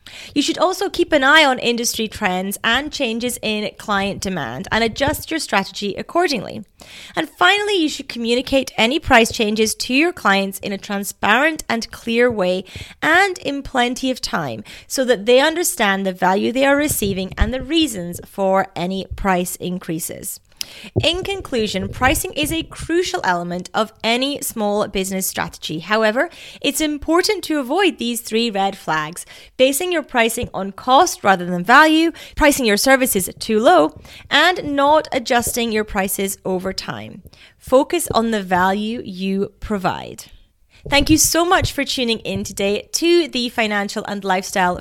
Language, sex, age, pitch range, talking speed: English, female, 30-49, 200-295 Hz, 155 wpm